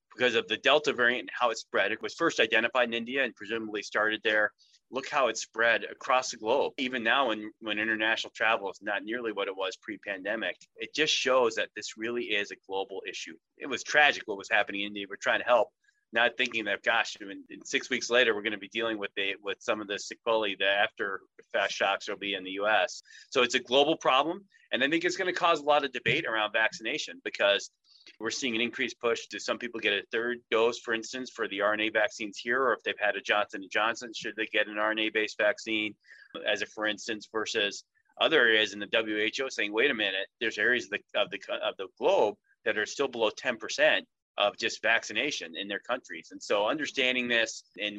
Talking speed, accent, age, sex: 230 wpm, American, 30-49, male